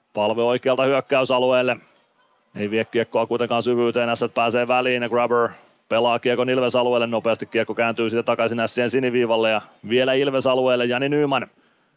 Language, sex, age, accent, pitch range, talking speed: Finnish, male, 30-49, native, 115-130 Hz, 135 wpm